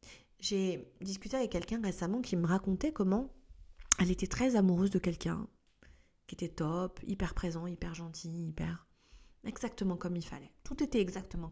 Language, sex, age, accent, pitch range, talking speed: French, female, 40-59, French, 165-215 Hz, 155 wpm